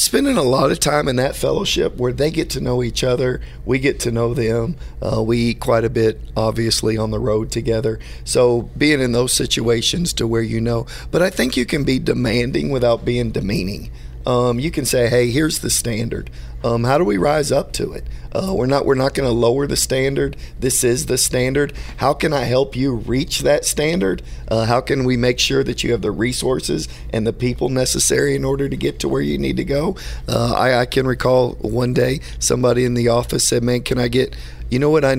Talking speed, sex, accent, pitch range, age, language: 225 wpm, male, American, 115-130 Hz, 40-59, English